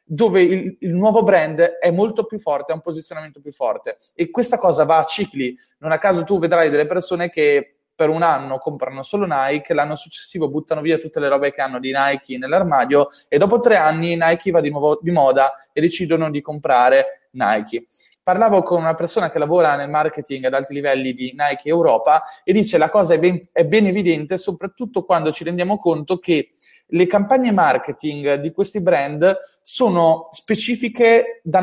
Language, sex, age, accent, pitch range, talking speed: Italian, male, 20-39, native, 155-200 Hz, 190 wpm